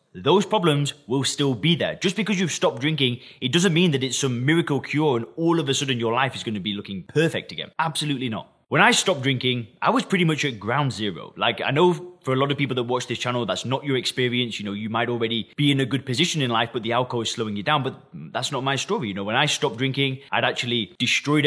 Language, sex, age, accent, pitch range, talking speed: English, male, 20-39, British, 120-155 Hz, 265 wpm